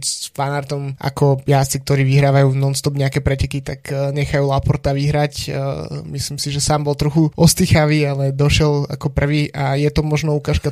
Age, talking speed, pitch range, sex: 20-39, 160 wpm, 140-145 Hz, male